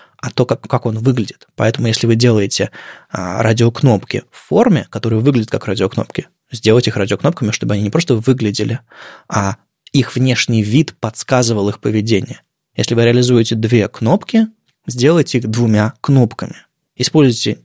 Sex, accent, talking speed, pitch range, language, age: male, native, 145 wpm, 110-130 Hz, Russian, 20-39